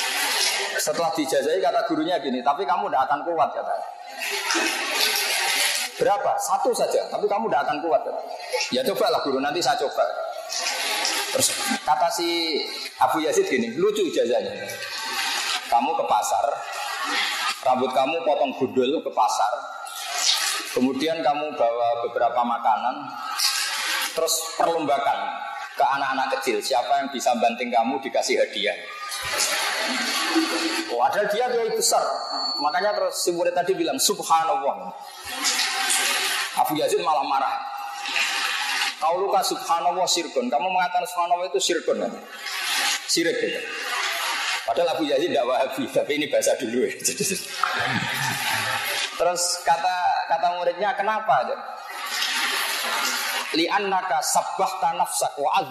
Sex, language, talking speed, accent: male, Indonesian, 120 wpm, native